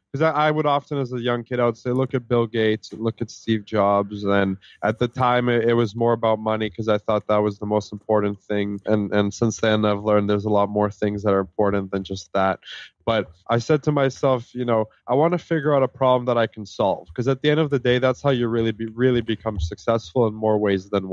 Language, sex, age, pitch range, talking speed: English, male, 20-39, 105-125 Hz, 260 wpm